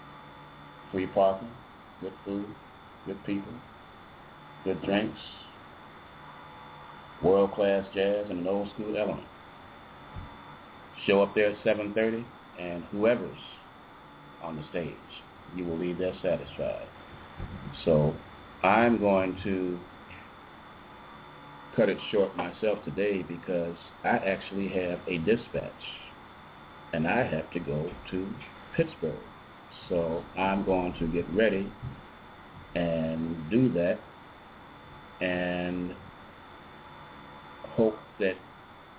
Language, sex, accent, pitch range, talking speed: English, male, American, 70-95 Hz, 95 wpm